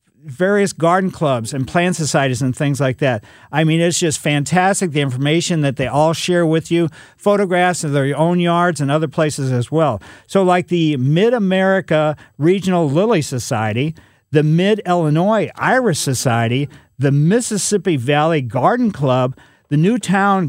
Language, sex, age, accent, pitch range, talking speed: English, male, 50-69, American, 140-190 Hz, 150 wpm